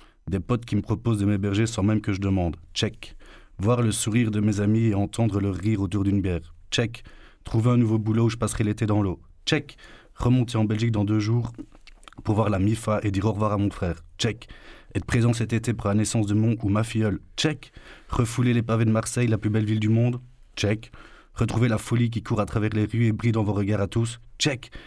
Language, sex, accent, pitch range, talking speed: French, male, French, 100-110 Hz, 235 wpm